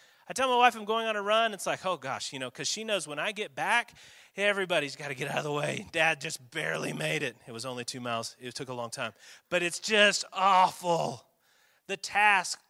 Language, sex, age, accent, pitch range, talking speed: English, male, 30-49, American, 180-275 Hz, 240 wpm